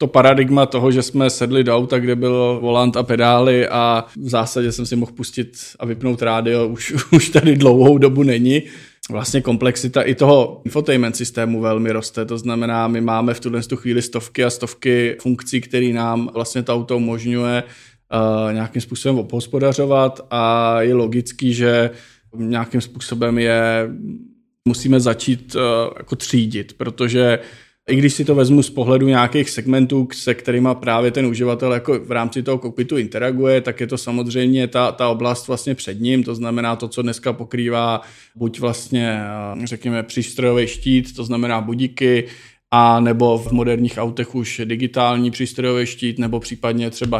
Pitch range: 115-130 Hz